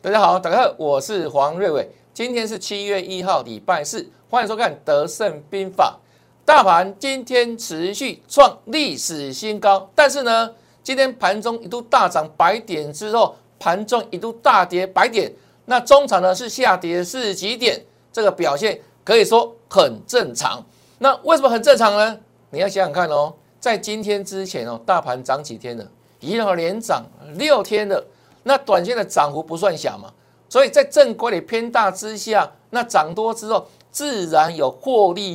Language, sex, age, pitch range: Chinese, male, 60-79, 180-250 Hz